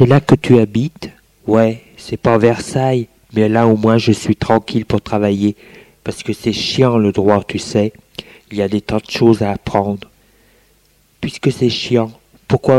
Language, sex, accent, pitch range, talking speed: French, male, French, 105-125 Hz, 185 wpm